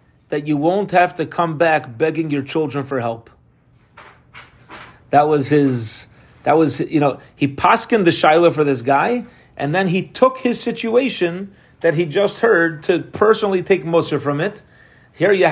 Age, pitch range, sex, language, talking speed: 40-59, 140-175 Hz, male, English, 170 wpm